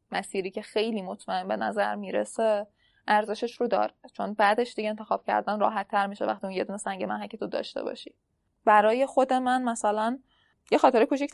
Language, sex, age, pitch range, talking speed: Persian, female, 10-29, 200-250 Hz, 175 wpm